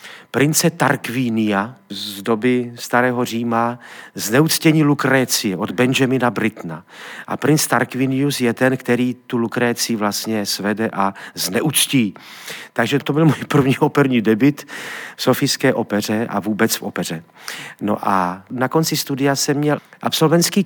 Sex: male